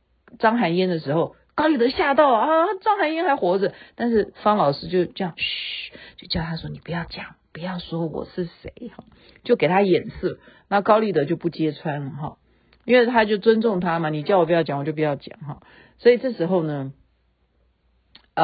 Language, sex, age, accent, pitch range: Chinese, female, 50-69, native, 155-235 Hz